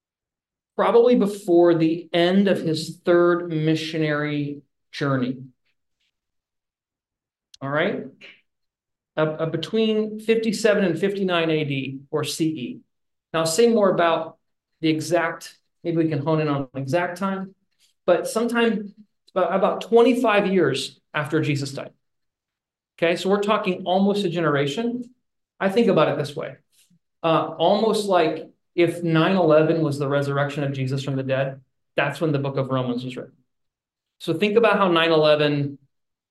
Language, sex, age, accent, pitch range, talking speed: English, male, 40-59, American, 140-180 Hz, 135 wpm